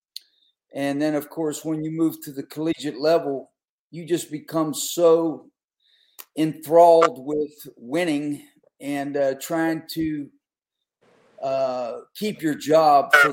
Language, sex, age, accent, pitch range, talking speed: English, male, 50-69, American, 140-165 Hz, 120 wpm